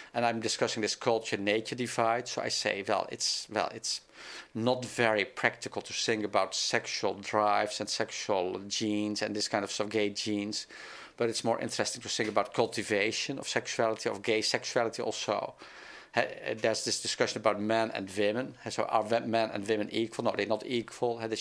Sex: male